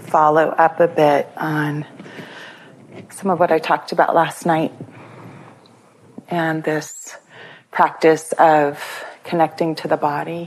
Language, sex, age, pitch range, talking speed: English, female, 30-49, 155-175 Hz, 120 wpm